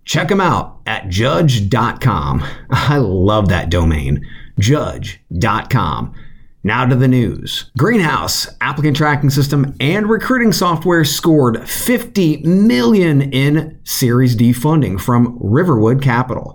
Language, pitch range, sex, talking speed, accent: English, 115-155 Hz, male, 110 wpm, American